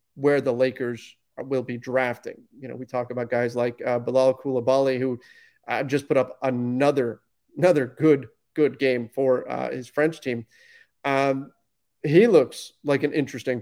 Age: 30-49